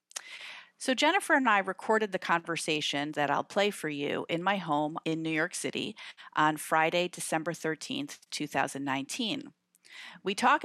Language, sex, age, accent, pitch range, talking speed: English, female, 40-59, American, 155-200 Hz, 145 wpm